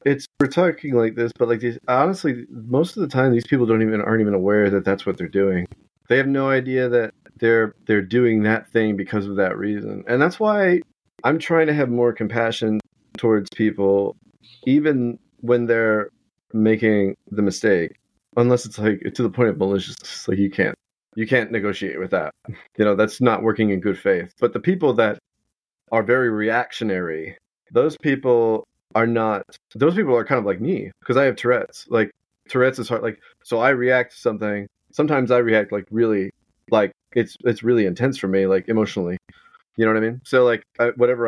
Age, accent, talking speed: 30-49, American, 195 wpm